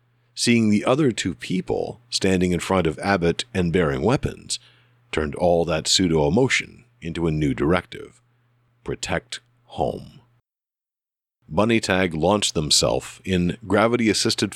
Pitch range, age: 90-120 Hz, 50-69